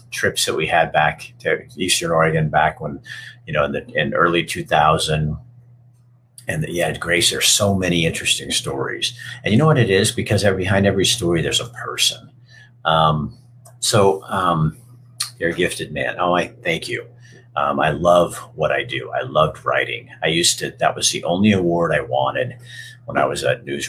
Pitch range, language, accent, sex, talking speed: 90-125 Hz, English, American, male, 190 wpm